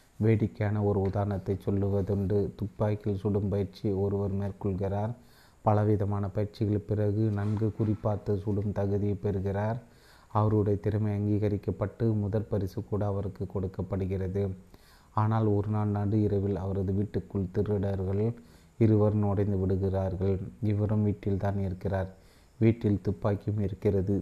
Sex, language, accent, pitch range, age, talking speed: male, Tamil, native, 100-105 Hz, 30-49, 100 wpm